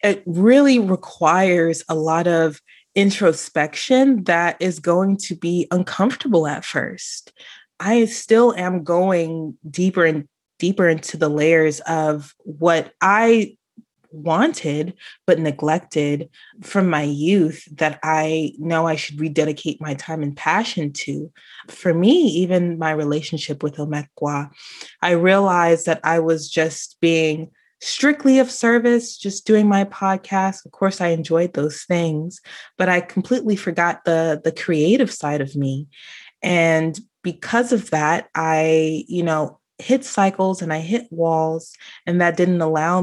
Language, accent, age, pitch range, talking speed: English, American, 20-39, 155-200 Hz, 140 wpm